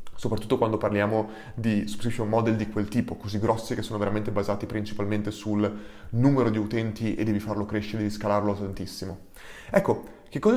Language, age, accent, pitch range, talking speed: Italian, 20-39, native, 105-130 Hz, 170 wpm